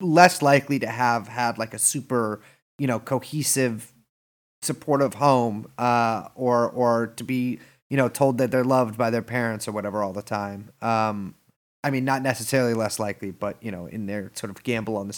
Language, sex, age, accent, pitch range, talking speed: English, male, 30-49, American, 120-170 Hz, 195 wpm